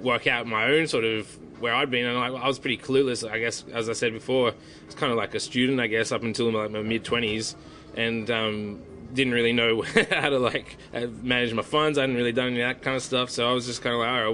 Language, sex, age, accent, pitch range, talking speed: English, male, 20-39, Australian, 115-130 Hz, 270 wpm